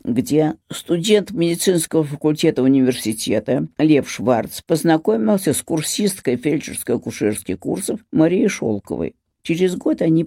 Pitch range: 130-170 Hz